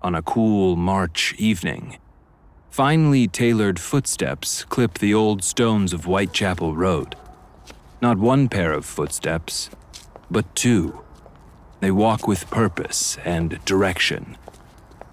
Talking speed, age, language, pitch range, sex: 110 wpm, 40-59, English, 85-115 Hz, male